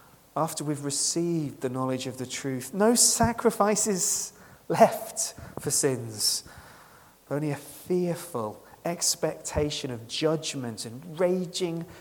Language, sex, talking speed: English, male, 105 wpm